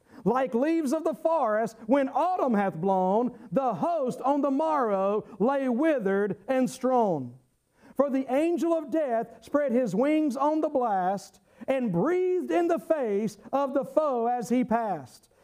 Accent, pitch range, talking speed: American, 220-290 Hz, 155 wpm